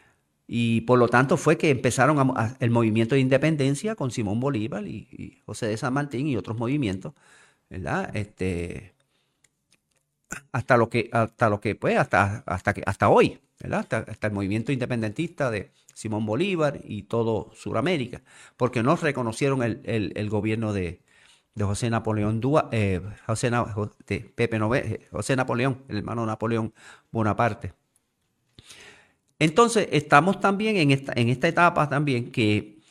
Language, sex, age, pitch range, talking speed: Spanish, male, 50-69, 105-140 Hz, 155 wpm